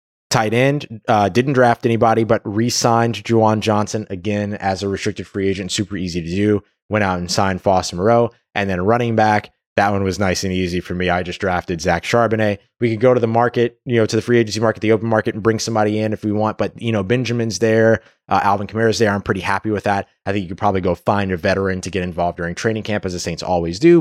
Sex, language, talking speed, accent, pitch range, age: male, English, 250 wpm, American, 95-120 Hz, 20-39